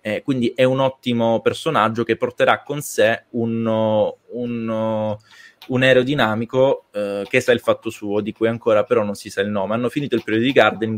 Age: 20-39